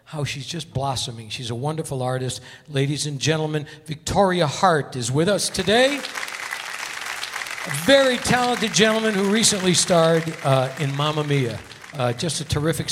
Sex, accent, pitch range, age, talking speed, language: male, American, 125-165 Hz, 60-79, 155 wpm, English